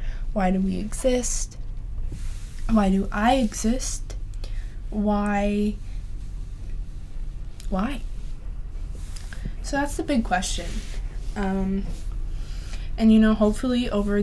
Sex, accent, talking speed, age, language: female, American, 90 wpm, 20-39, English